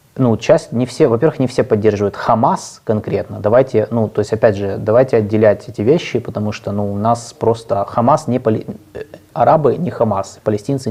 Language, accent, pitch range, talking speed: Russian, native, 105-125 Hz, 175 wpm